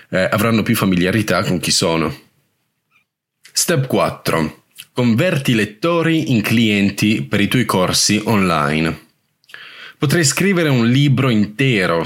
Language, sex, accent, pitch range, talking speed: Italian, male, native, 95-125 Hz, 115 wpm